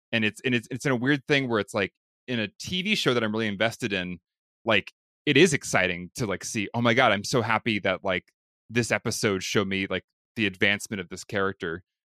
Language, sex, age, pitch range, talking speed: English, male, 20-39, 95-115 Hz, 230 wpm